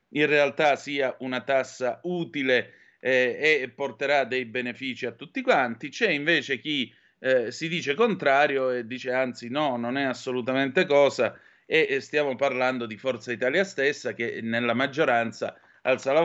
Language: Italian